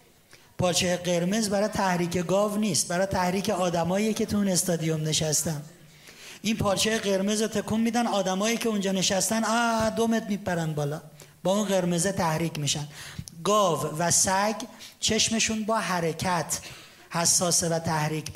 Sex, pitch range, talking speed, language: male, 165-215 Hz, 135 wpm, Persian